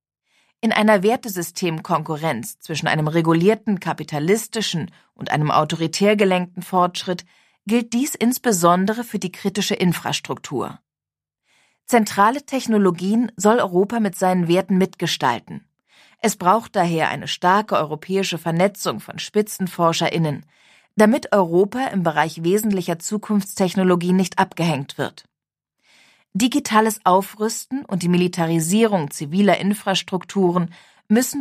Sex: female